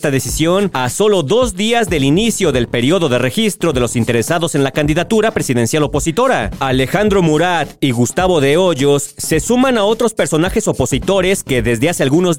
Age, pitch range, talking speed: 40-59, 135-185 Hz, 175 wpm